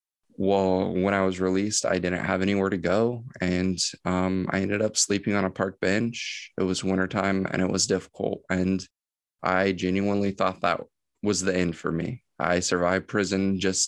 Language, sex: English, male